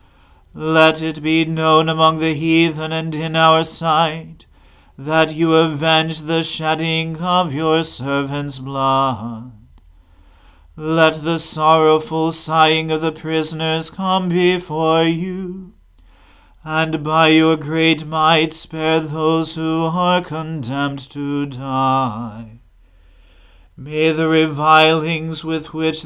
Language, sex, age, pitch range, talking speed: English, male, 40-59, 135-160 Hz, 110 wpm